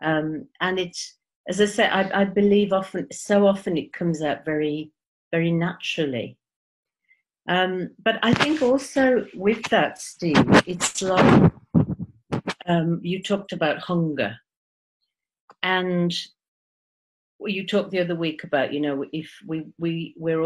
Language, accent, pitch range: English, British, 150-195 Hz